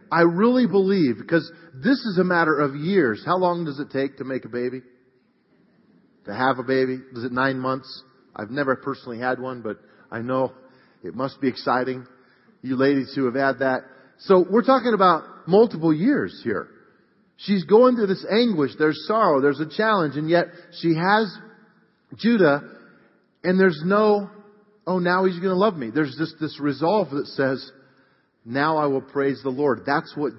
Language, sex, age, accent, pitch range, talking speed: English, male, 40-59, American, 125-170 Hz, 180 wpm